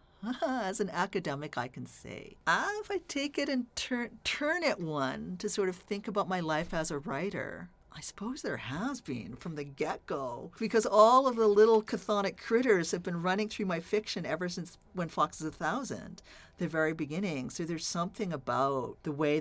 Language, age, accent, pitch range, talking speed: English, 50-69, American, 140-200 Hz, 195 wpm